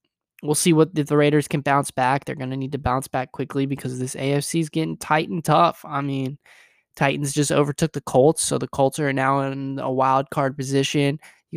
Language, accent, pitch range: English, American, 135-155 Hz